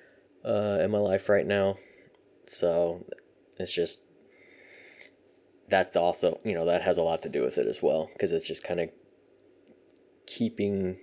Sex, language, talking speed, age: male, English, 160 wpm, 20-39